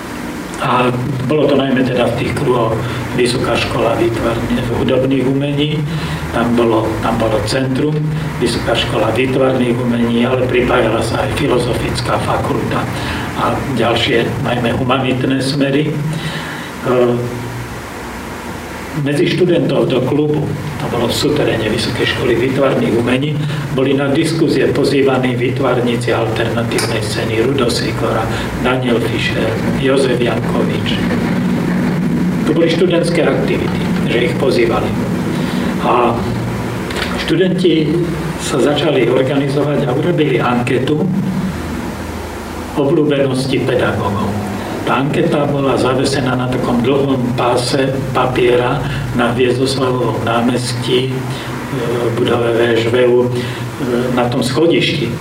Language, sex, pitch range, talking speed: Slovak, male, 115-140 Hz, 100 wpm